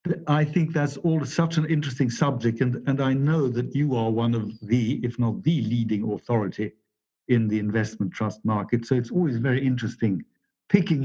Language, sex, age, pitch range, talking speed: English, male, 60-79, 110-145 Hz, 185 wpm